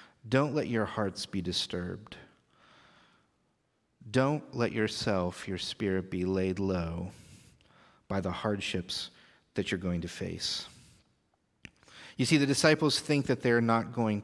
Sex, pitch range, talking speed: male, 95-120 Hz, 130 wpm